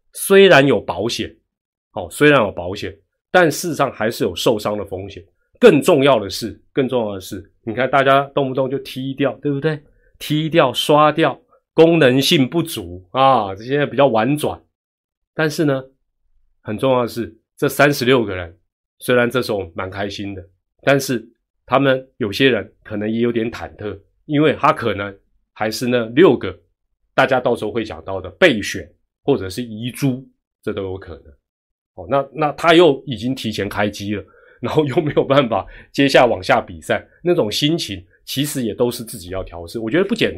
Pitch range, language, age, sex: 100-140 Hz, Chinese, 30-49, male